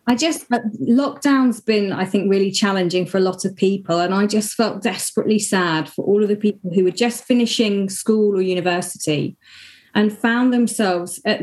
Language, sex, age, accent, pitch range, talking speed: English, female, 30-49, British, 185-225 Hz, 190 wpm